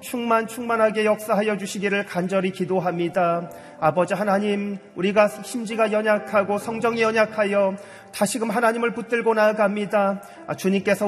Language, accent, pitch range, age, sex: Korean, native, 120-200 Hz, 40-59, male